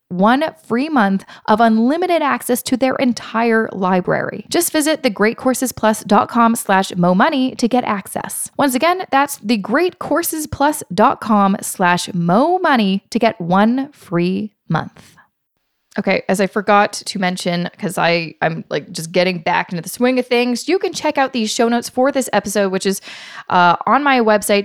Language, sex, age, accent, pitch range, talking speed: English, female, 20-39, American, 190-260 Hz, 155 wpm